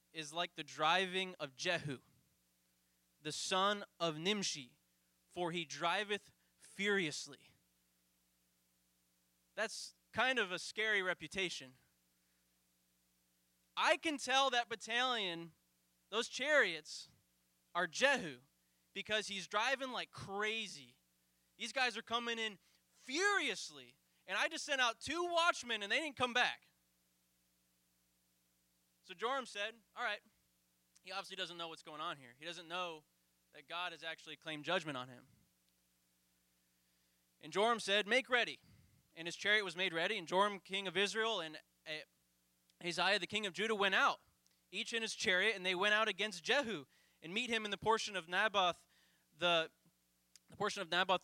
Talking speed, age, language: 145 wpm, 20-39, English